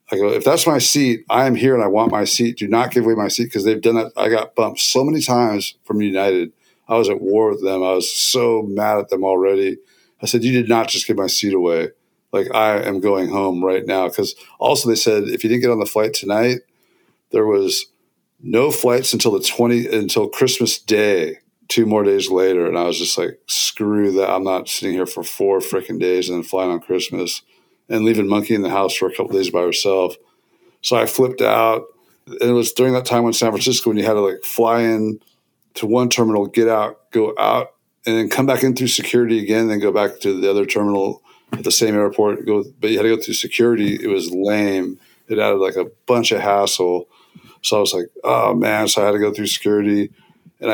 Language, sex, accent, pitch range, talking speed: English, male, American, 100-120 Hz, 235 wpm